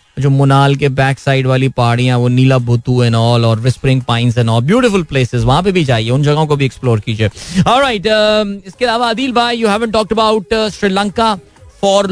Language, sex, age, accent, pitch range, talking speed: Hindi, male, 30-49, native, 135-195 Hz, 140 wpm